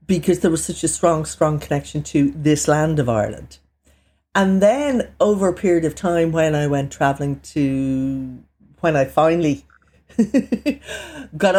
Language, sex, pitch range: English, female, 120-195 Hz